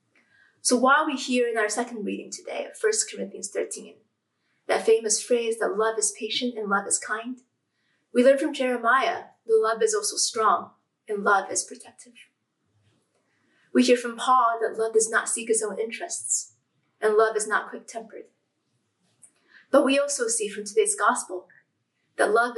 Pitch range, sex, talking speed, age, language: 215-265 Hz, female, 165 wpm, 20-39, English